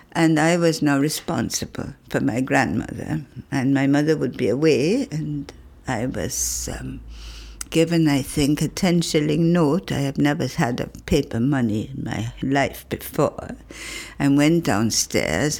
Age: 60-79